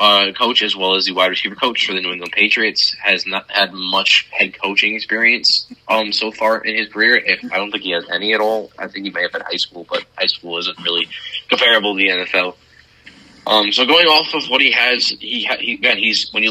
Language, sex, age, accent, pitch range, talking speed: English, male, 20-39, American, 95-110 Hz, 245 wpm